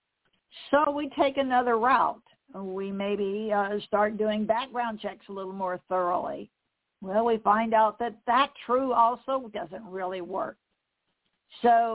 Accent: American